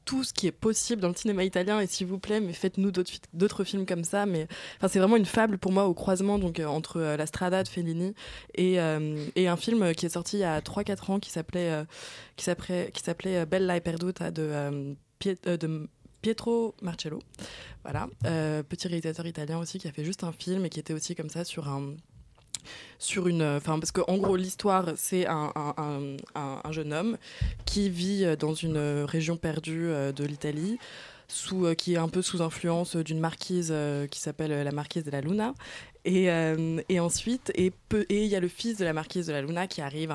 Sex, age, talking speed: female, 20-39, 195 wpm